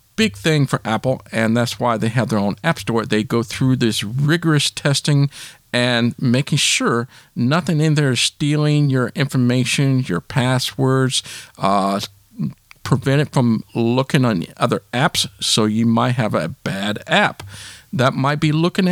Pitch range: 115-160 Hz